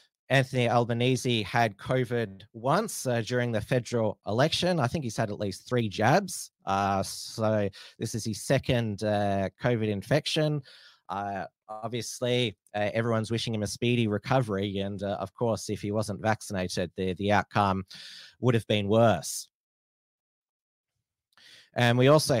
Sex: male